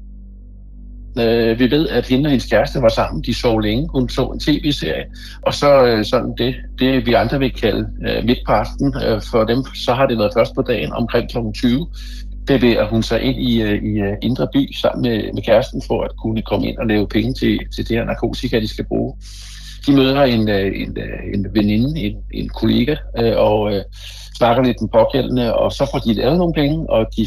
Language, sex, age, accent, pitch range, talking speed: Danish, male, 60-79, native, 110-130 Hz, 220 wpm